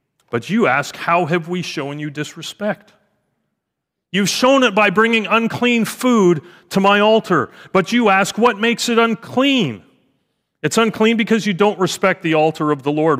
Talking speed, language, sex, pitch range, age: 170 wpm, English, male, 160-215 Hz, 40-59